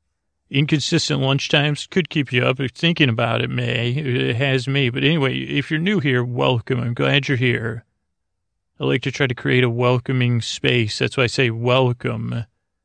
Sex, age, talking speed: male, 40-59, 185 wpm